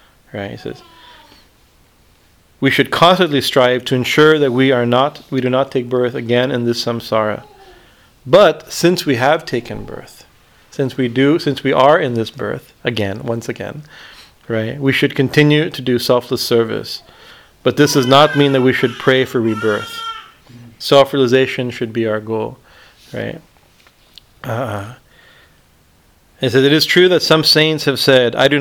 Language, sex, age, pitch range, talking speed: English, male, 40-59, 120-140 Hz, 165 wpm